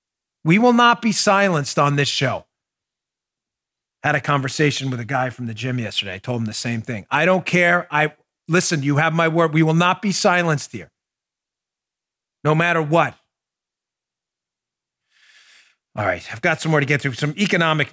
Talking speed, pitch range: 175 wpm, 130-175 Hz